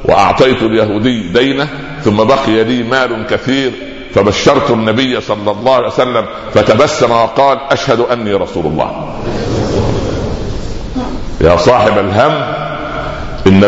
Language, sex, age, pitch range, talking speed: Arabic, male, 60-79, 105-130 Hz, 105 wpm